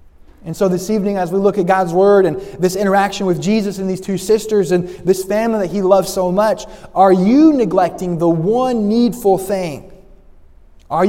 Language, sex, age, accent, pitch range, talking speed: English, male, 20-39, American, 180-215 Hz, 190 wpm